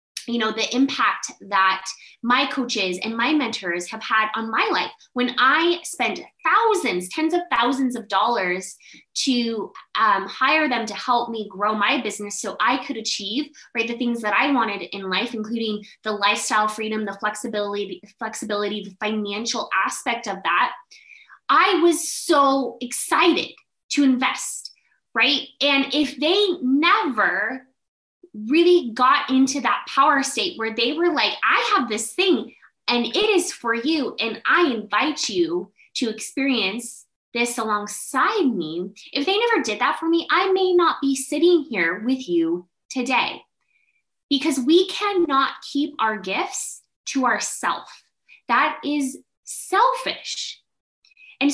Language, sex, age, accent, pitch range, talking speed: English, female, 20-39, American, 215-310 Hz, 145 wpm